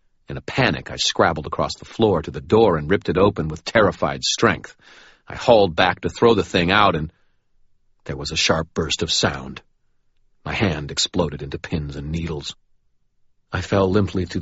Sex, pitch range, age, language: male, 80-95 Hz, 40-59, Italian